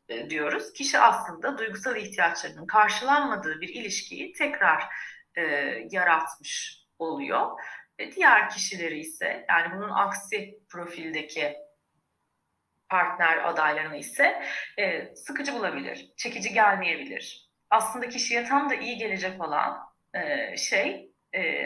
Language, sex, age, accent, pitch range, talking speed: Turkish, female, 30-49, native, 180-225 Hz, 105 wpm